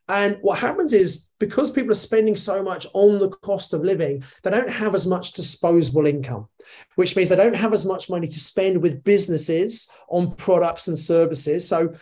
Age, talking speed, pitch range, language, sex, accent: 30-49, 195 wpm, 165-215 Hz, English, male, British